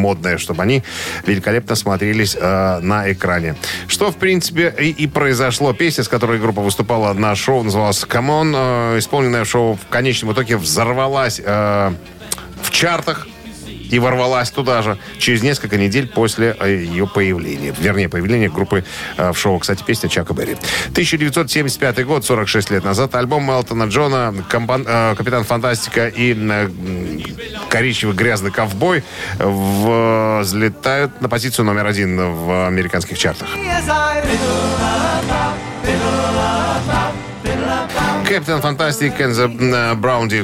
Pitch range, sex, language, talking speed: 100-125 Hz, male, Russian, 115 wpm